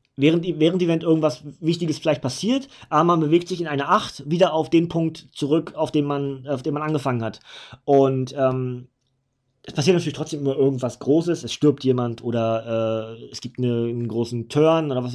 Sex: male